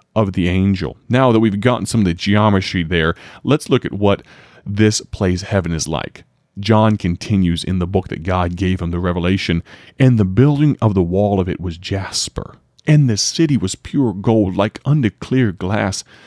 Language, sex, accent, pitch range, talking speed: English, male, American, 95-125 Hz, 190 wpm